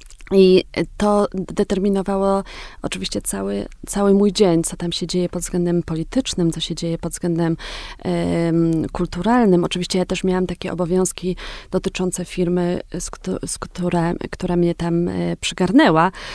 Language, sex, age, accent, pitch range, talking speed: Polish, female, 30-49, native, 170-195 Hz, 120 wpm